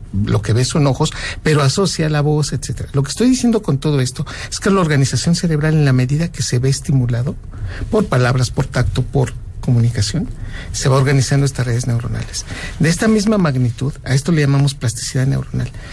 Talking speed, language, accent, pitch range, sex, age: 190 wpm, Spanish, Mexican, 125-150 Hz, male, 60-79